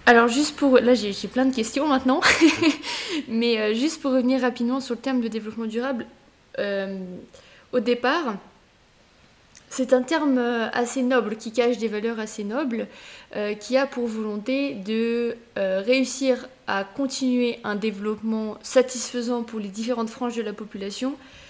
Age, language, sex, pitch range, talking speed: 20-39, French, female, 220-260 Hz, 150 wpm